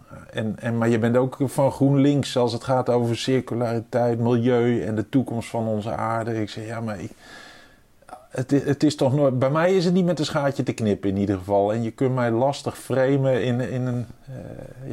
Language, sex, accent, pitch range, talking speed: Dutch, male, Dutch, 105-125 Hz, 215 wpm